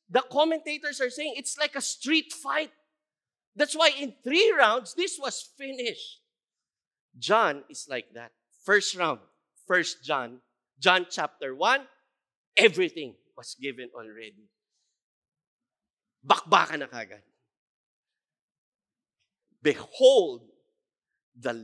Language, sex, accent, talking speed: English, male, Filipino, 100 wpm